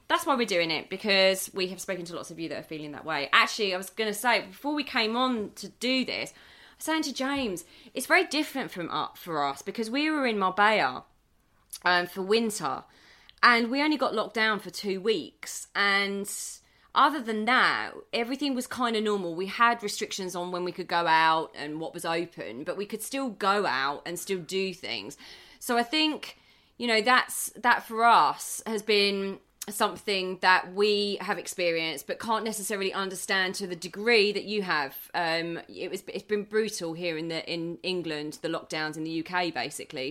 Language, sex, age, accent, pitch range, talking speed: English, female, 20-39, British, 170-220 Hz, 200 wpm